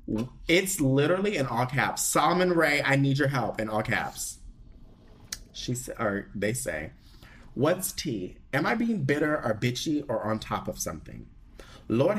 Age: 30-49